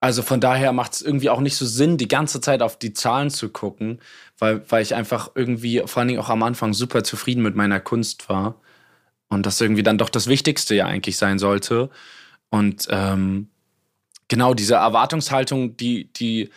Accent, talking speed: German, 190 wpm